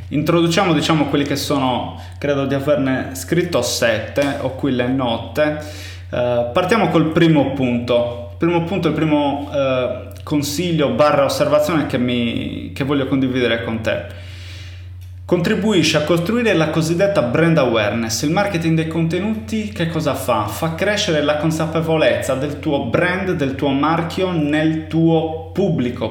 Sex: male